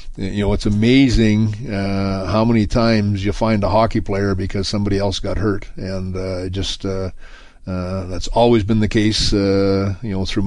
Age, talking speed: 40-59, 190 wpm